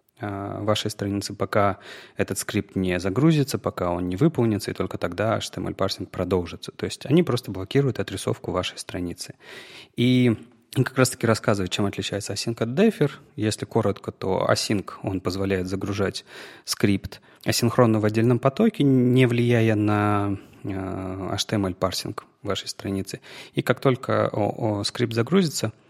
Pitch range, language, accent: 100-130 Hz, Russian, native